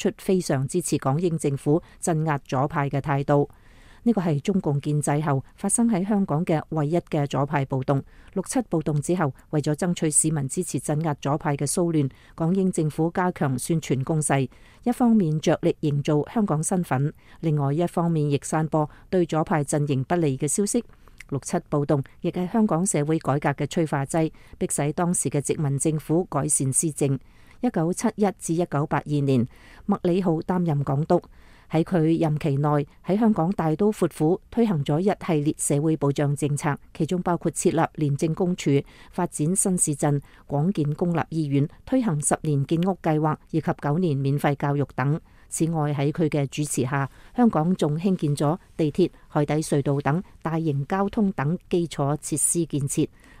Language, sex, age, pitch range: English, female, 40-59, 145-175 Hz